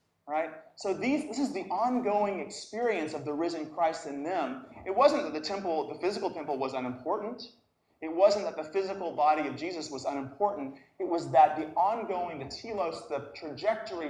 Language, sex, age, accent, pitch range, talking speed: English, male, 30-49, American, 145-200 Hz, 185 wpm